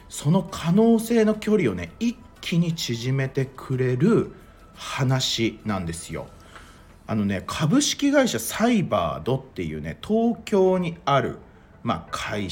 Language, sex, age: Japanese, male, 40-59